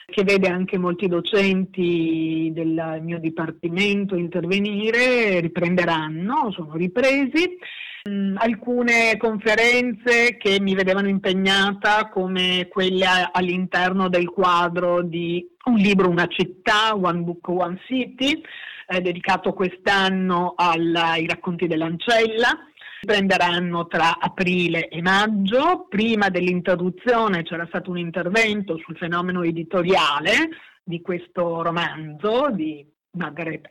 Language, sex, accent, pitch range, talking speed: Italian, female, native, 175-225 Hz, 100 wpm